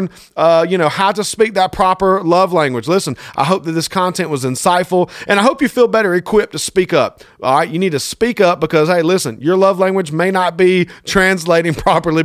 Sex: male